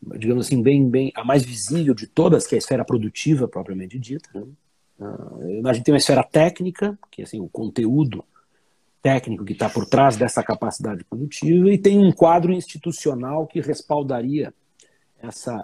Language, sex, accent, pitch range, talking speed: Portuguese, male, Brazilian, 115-150 Hz, 175 wpm